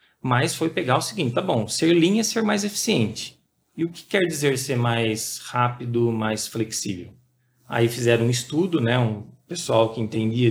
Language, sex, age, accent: Portuguese, male, 40-59, Brazilian